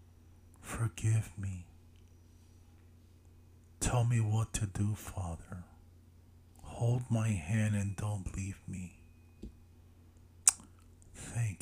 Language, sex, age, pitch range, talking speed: English, male, 50-69, 85-105 Hz, 85 wpm